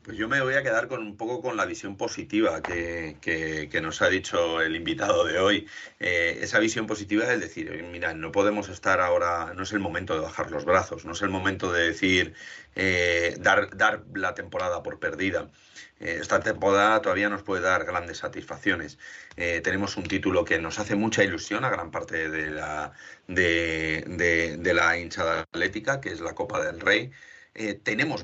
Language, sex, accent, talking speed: Spanish, male, Spanish, 195 wpm